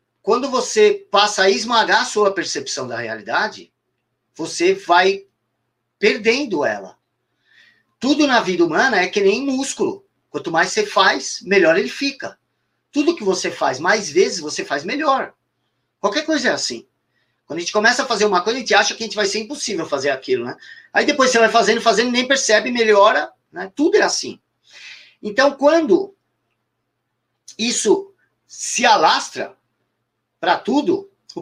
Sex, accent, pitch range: male, Brazilian, 170-260 Hz